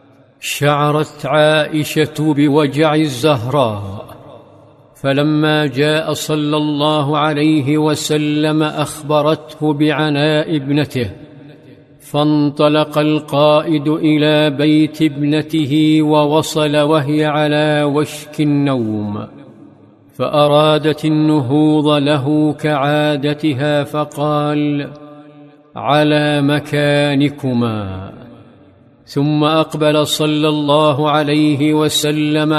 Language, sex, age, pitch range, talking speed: Arabic, male, 50-69, 145-155 Hz, 65 wpm